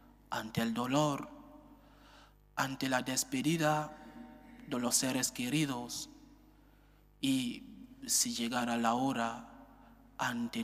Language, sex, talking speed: English, male, 90 wpm